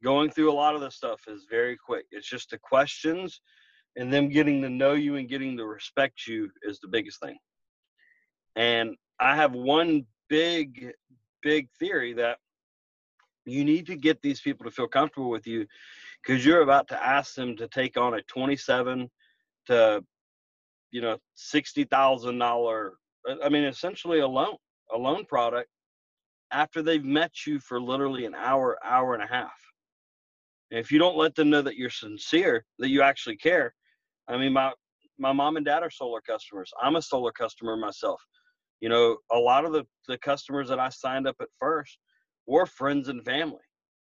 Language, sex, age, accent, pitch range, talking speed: English, male, 40-59, American, 120-155 Hz, 175 wpm